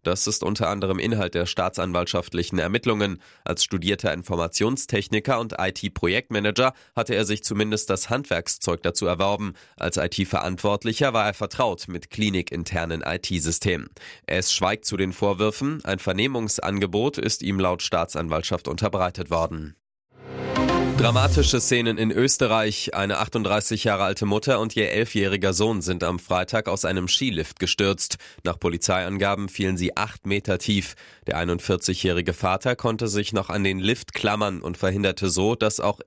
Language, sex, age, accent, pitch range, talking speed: German, male, 20-39, German, 90-105 Hz, 140 wpm